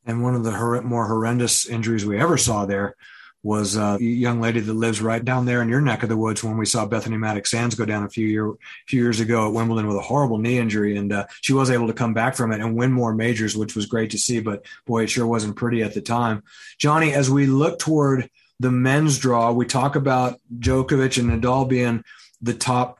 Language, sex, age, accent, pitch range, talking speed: English, male, 30-49, American, 115-130 Hz, 235 wpm